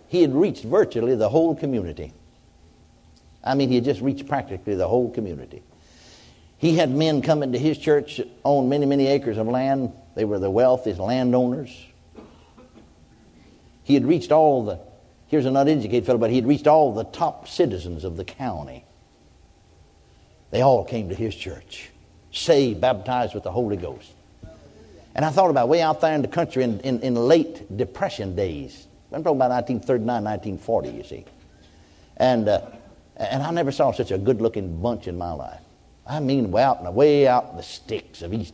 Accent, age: American, 60-79